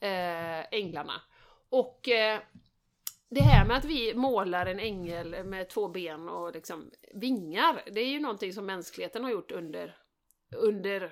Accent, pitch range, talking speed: native, 185-255 Hz, 140 wpm